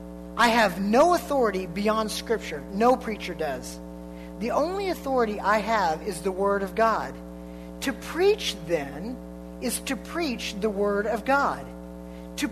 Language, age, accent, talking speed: English, 50-69, American, 145 wpm